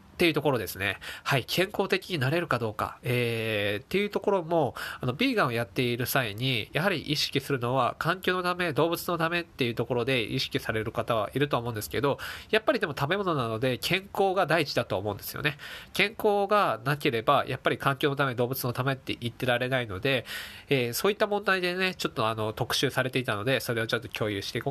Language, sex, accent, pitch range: Japanese, male, native, 115-170 Hz